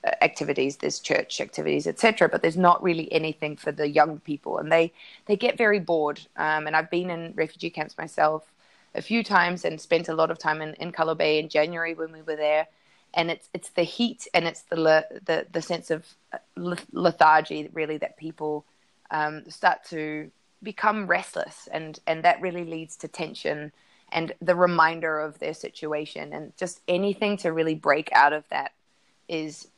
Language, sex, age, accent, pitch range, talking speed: English, female, 20-39, Australian, 155-175 Hz, 195 wpm